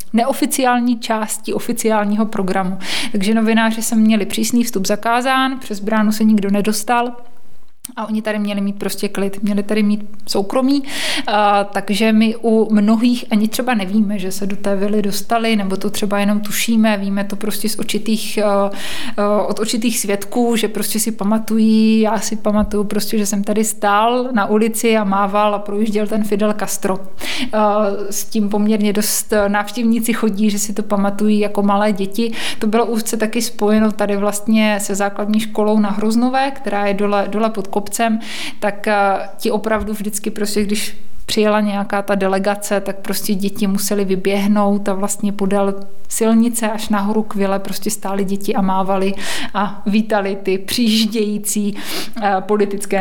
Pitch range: 200-225 Hz